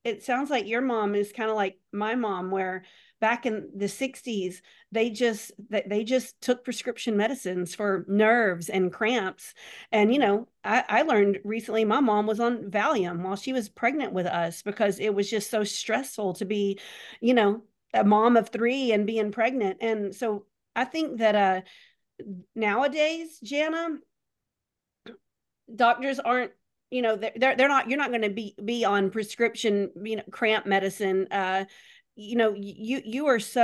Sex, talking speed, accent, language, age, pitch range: female, 170 wpm, American, English, 40-59, 195-235 Hz